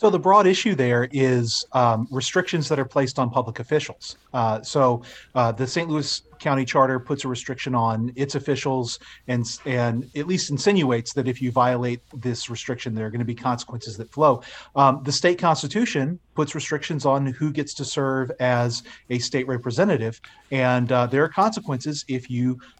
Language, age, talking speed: English, 30-49, 180 wpm